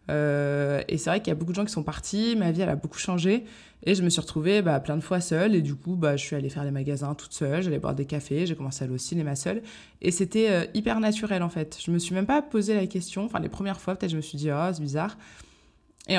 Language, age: French, 20-39